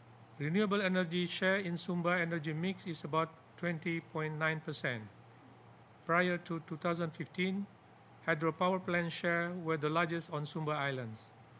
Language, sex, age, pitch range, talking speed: English, male, 50-69, 150-180 Hz, 120 wpm